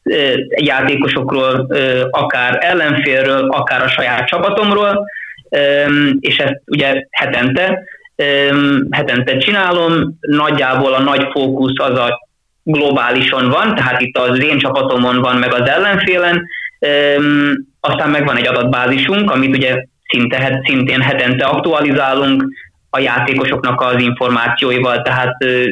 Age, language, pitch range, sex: 20-39, Hungarian, 130-150 Hz, male